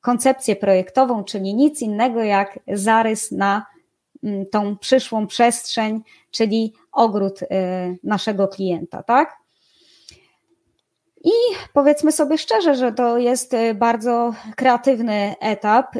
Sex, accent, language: female, native, Polish